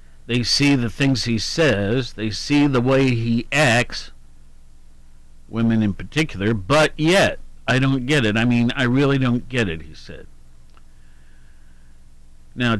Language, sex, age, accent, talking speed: English, male, 60-79, American, 145 wpm